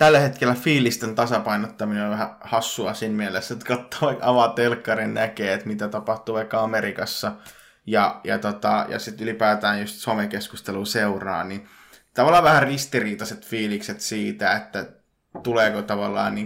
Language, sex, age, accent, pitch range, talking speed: English, male, 20-39, Finnish, 105-125 Hz, 140 wpm